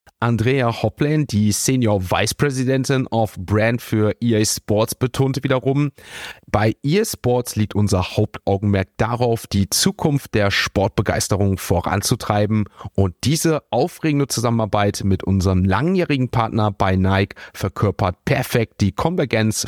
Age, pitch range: 30-49, 105-140 Hz